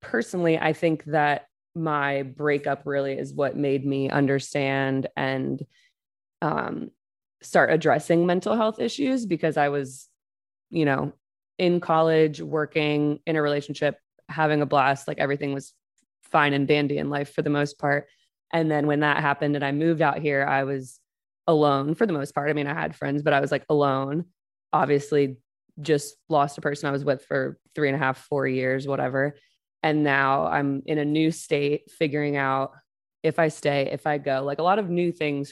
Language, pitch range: English, 140-160 Hz